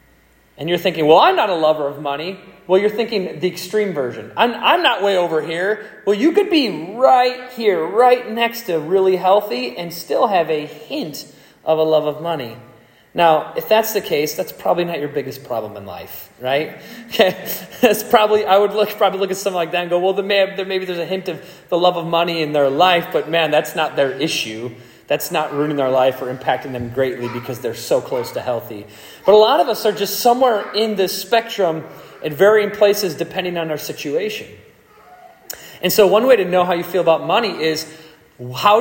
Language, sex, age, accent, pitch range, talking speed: English, male, 30-49, American, 150-205 Hz, 215 wpm